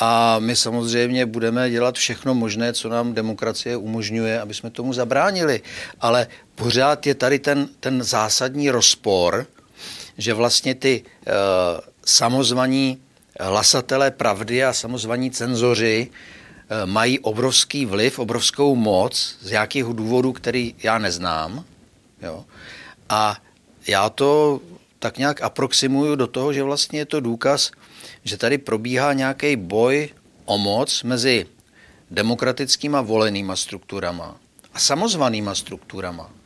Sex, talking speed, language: male, 120 wpm, Czech